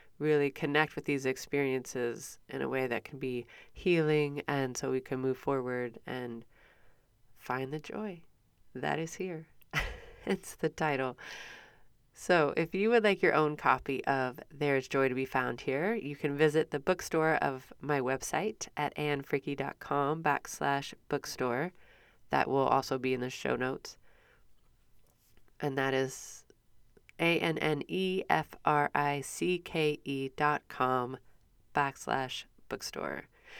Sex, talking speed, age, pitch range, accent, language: female, 125 wpm, 30-49, 130-150 Hz, American, English